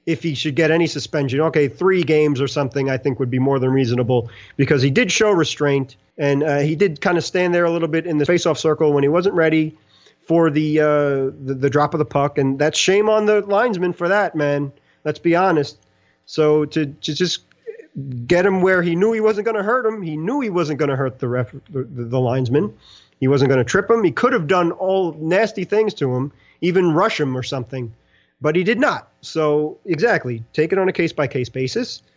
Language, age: English, 40-59